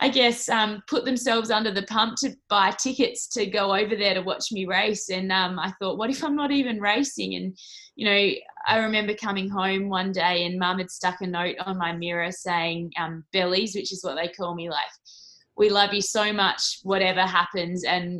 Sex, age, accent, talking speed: female, 20-39, Australian, 215 wpm